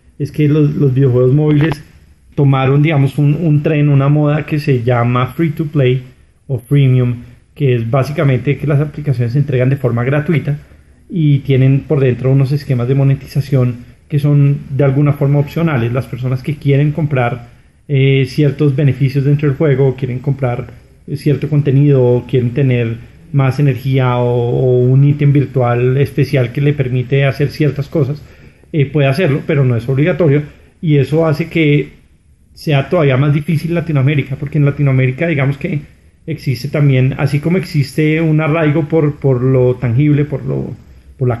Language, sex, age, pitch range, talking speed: Spanish, male, 30-49, 130-150 Hz, 160 wpm